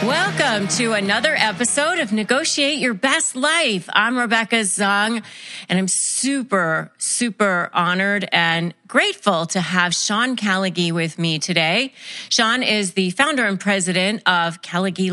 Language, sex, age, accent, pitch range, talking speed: English, female, 30-49, American, 175-230 Hz, 135 wpm